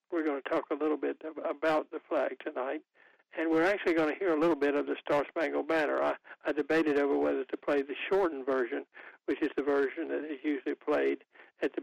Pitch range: 140-195 Hz